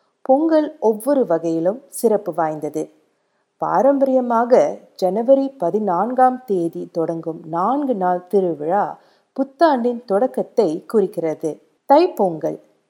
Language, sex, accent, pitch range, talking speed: Tamil, female, native, 165-255 Hz, 80 wpm